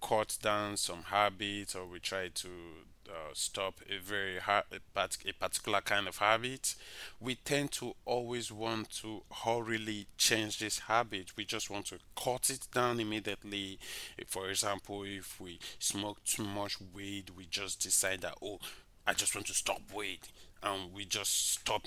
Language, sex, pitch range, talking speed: English, male, 95-110 Hz, 170 wpm